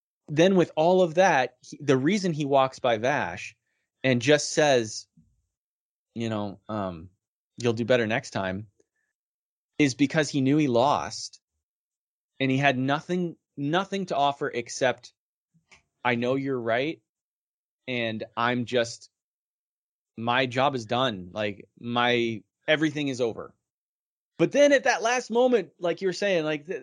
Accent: American